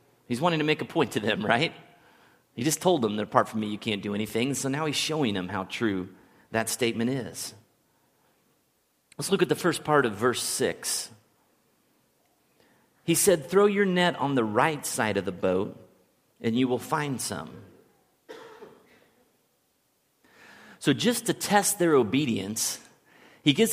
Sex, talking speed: male, 165 wpm